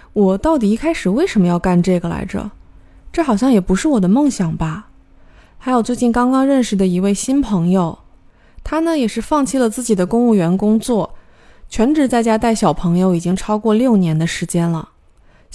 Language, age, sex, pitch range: Chinese, 20-39, female, 185-245 Hz